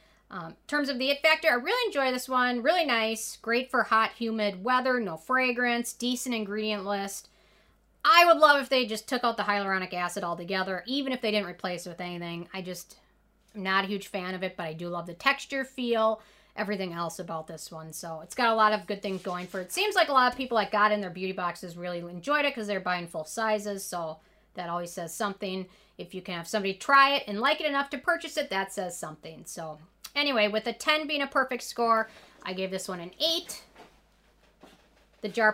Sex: female